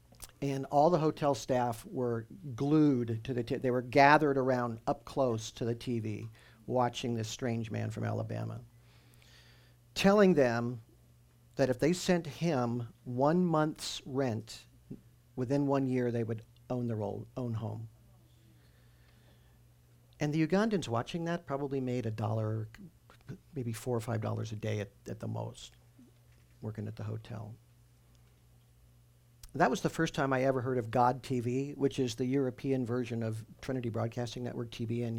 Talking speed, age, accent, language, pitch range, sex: 155 wpm, 50-69, American, English, 105-130 Hz, male